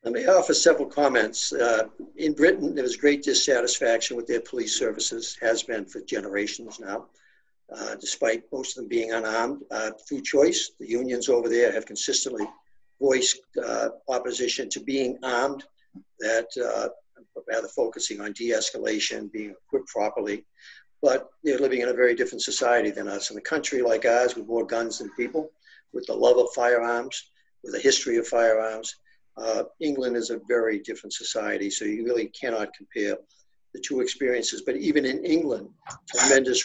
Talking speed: 170 wpm